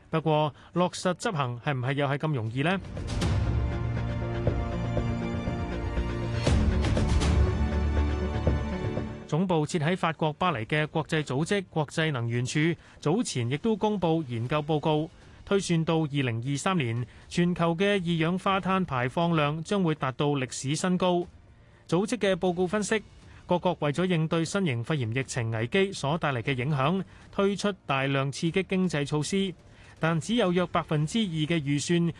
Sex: male